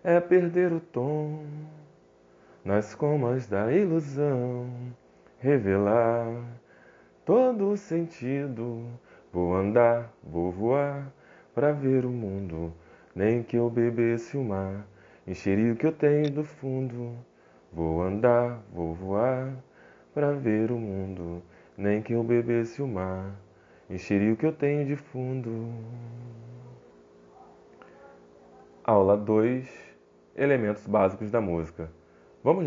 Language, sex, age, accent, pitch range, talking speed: Portuguese, male, 20-39, Brazilian, 80-125 Hz, 110 wpm